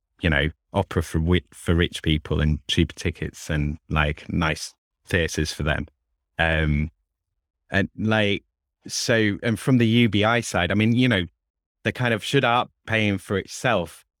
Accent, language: British, English